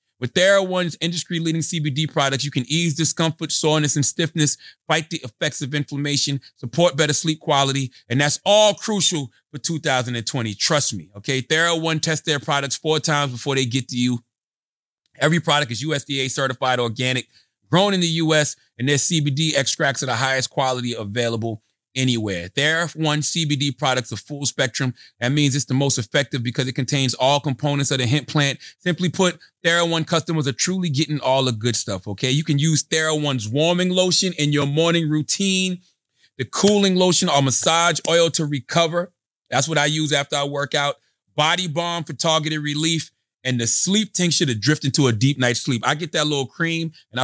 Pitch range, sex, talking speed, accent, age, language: 130-165 Hz, male, 180 wpm, American, 30-49, English